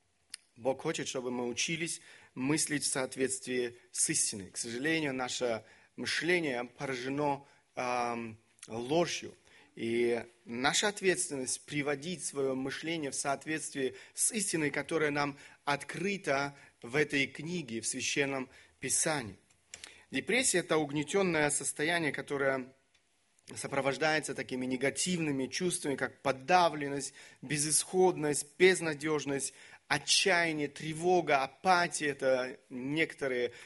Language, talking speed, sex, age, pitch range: Russian, 100 wpm, male, 30-49, 135-165 Hz